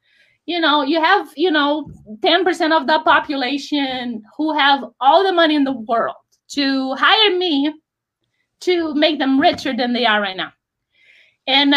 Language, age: English, 20-39